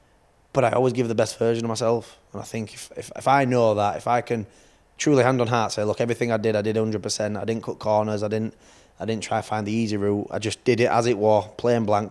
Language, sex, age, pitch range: English, male, 20-39, 105-115 Hz